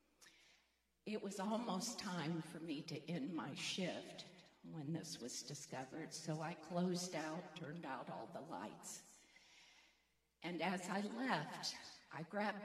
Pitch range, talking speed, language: 160-215 Hz, 140 wpm, English